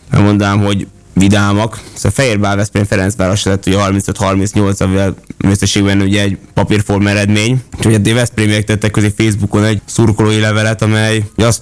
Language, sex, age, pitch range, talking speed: Hungarian, male, 20-39, 100-110 Hz, 135 wpm